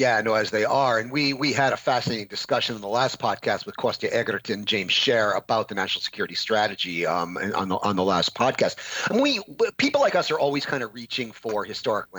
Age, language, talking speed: 40-59, English, 220 wpm